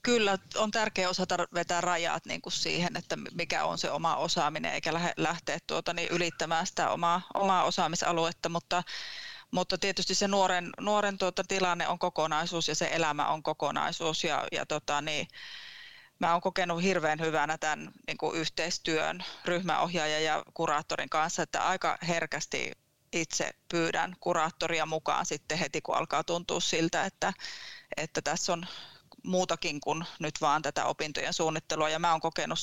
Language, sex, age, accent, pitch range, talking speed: Finnish, female, 30-49, native, 155-180 Hz, 135 wpm